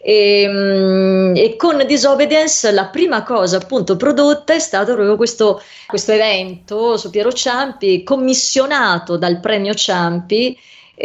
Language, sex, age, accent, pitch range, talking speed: English, female, 30-49, Italian, 175-220 Hz, 120 wpm